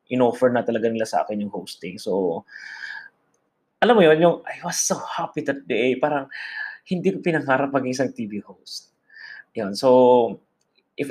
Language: Filipino